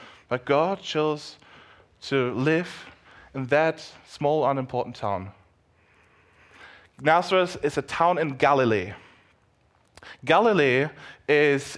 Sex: male